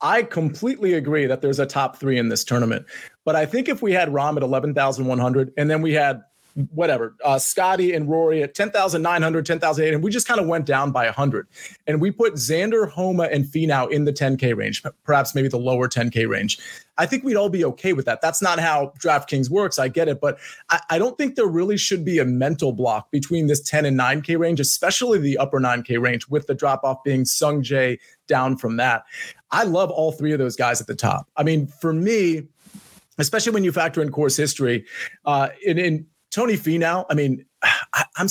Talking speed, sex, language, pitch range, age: 215 wpm, male, English, 135-170 Hz, 30-49